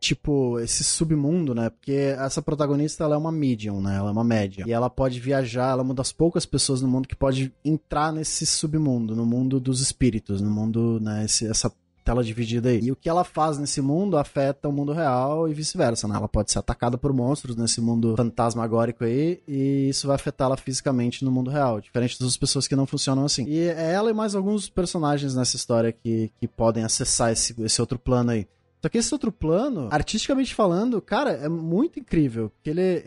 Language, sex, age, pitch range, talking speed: Portuguese, male, 20-39, 115-145 Hz, 210 wpm